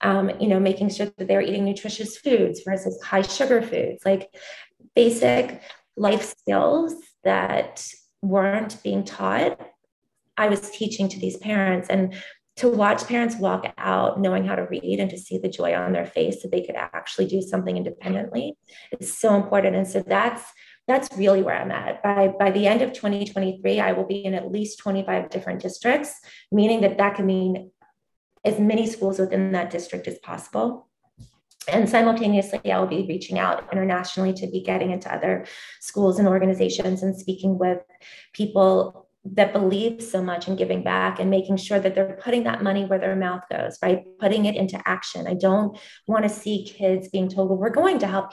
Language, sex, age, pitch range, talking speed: English, female, 20-39, 185-210 Hz, 185 wpm